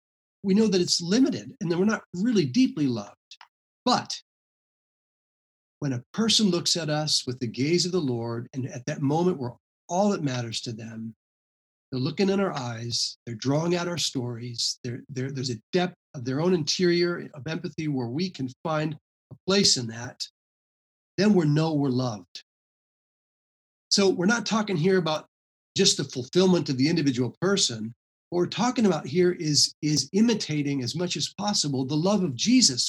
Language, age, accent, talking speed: English, 40-59, American, 175 wpm